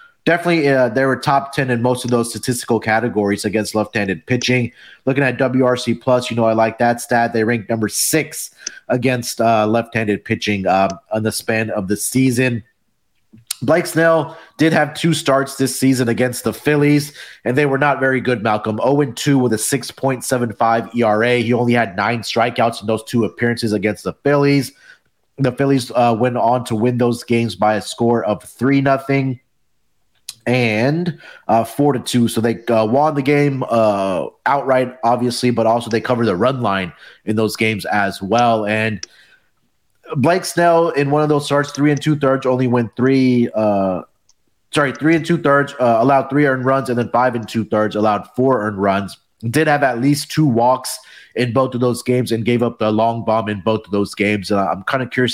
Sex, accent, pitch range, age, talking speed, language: male, American, 110-135 Hz, 30-49, 190 wpm, English